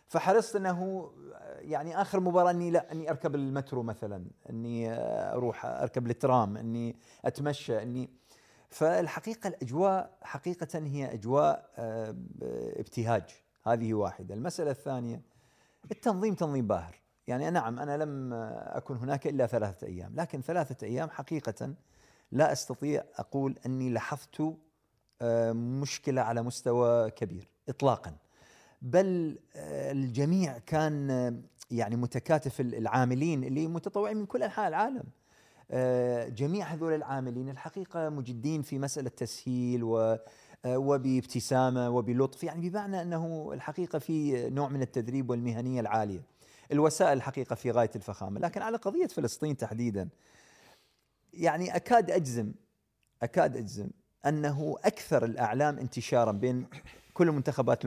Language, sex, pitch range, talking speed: Arabic, male, 120-160 Hz, 115 wpm